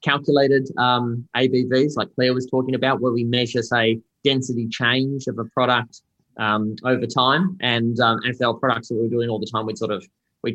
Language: English